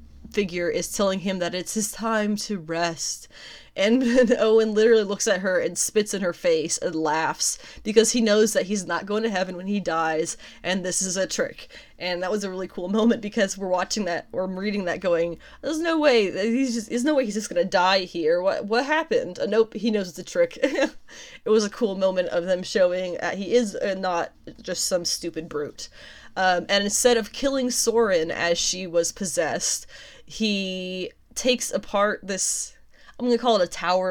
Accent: American